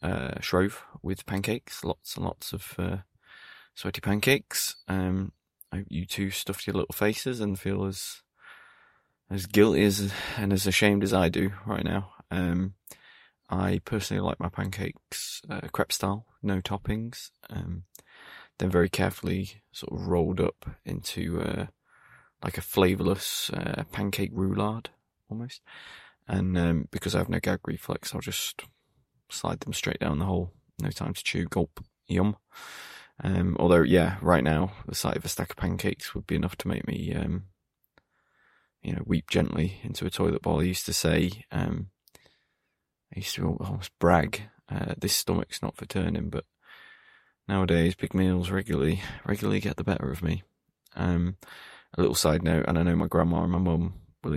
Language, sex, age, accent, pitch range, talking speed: English, male, 20-39, British, 85-100 Hz, 170 wpm